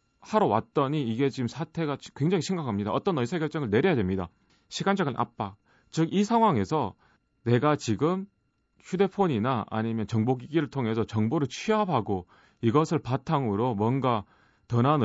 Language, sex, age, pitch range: Korean, male, 30-49, 110-155 Hz